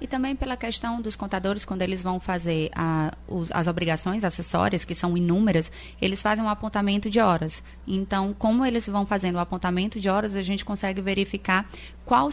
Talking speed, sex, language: 175 wpm, female, Portuguese